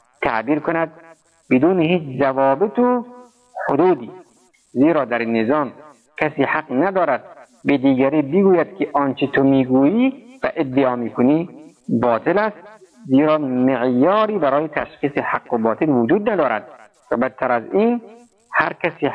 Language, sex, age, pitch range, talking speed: Persian, male, 50-69, 135-195 Hz, 130 wpm